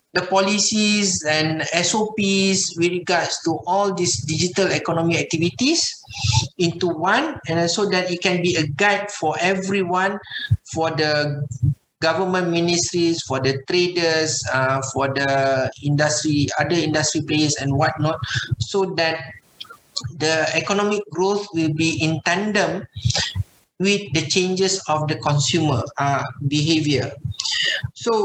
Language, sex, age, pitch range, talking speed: English, male, 50-69, 150-200 Hz, 125 wpm